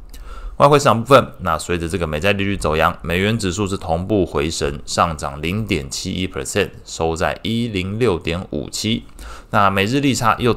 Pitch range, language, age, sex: 80-105 Hz, Chinese, 20-39, male